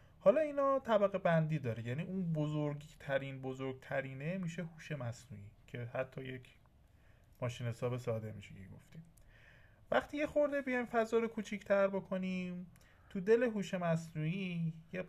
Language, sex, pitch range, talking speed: Persian, male, 125-190 Hz, 130 wpm